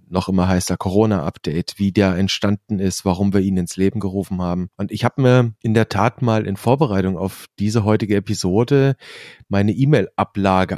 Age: 40-59